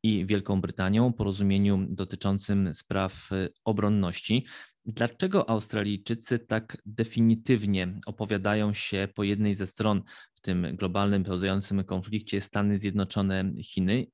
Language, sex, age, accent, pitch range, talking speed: Polish, male, 20-39, native, 95-110 Hz, 100 wpm